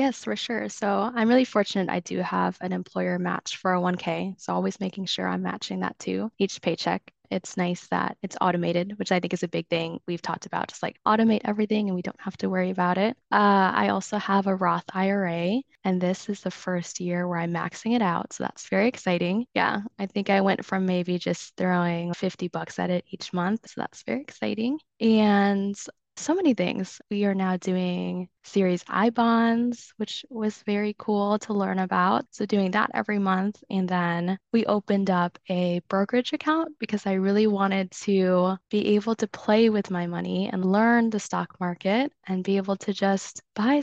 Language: English